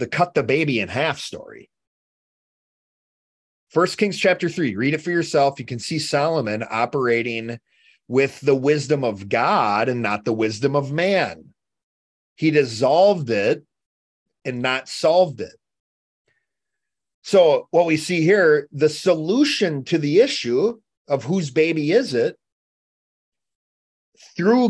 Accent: American